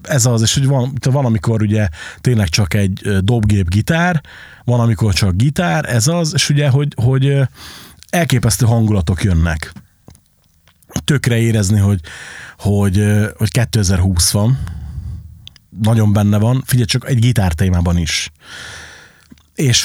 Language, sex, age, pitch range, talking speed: Hungarian, male, 30-49, 100-125 Hz, 125 wpm